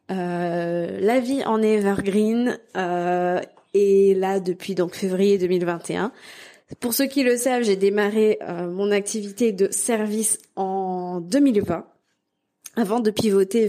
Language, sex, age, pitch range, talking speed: French, female, 20-39, 190-230 Hz, 125 wpm